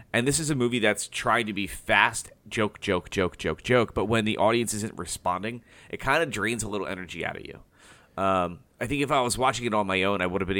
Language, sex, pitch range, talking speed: English, male, 95-120 Hz, 260 wpm